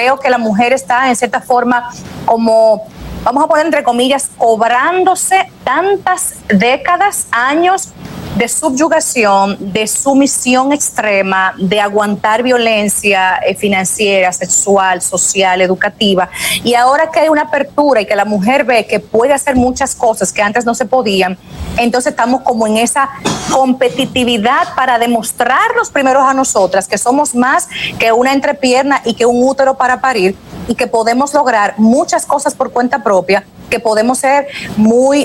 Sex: female